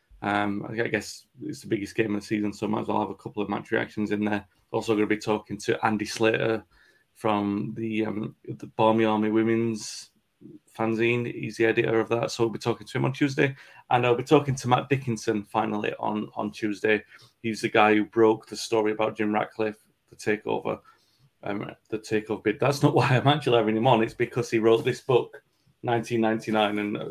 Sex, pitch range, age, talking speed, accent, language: male, 105-120 Hz, 30-49, 205 wpm, British, English